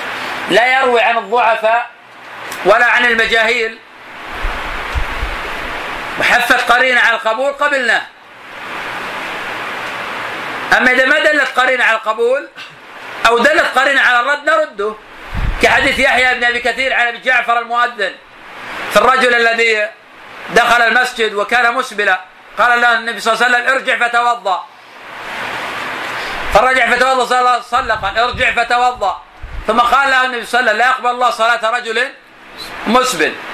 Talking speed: 130 wpm